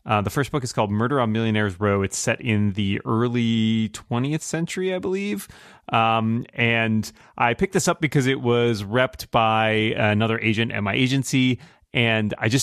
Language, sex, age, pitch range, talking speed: English, male, 30-49, 110-150 Hz, 180 wpm